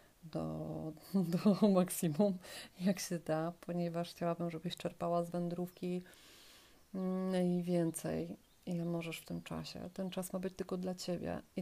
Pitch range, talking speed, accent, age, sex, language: 170-190 Hz, 140 wpm, native, 30-49, female, Polish